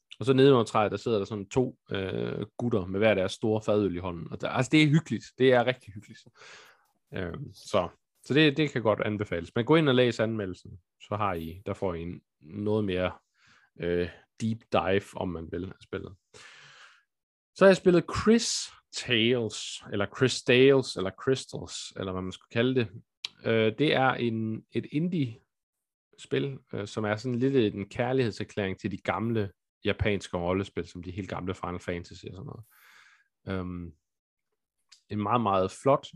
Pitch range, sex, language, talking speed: 95-130 Hz, male, Danish, 180 wpm